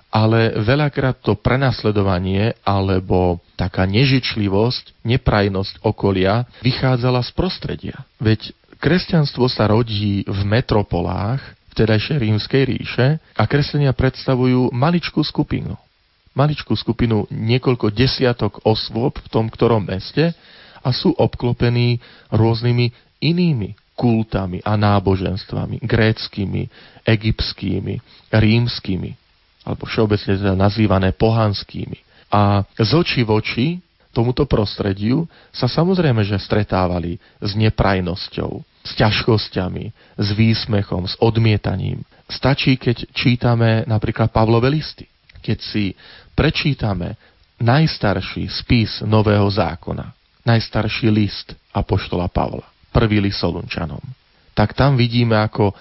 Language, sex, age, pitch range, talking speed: Slovak, male, 40-59, 100-125 Hz, 100 wpm